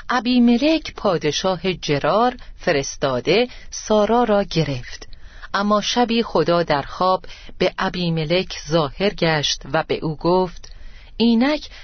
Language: Persian